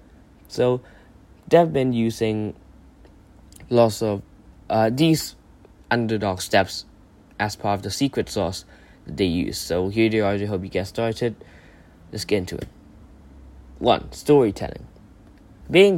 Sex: male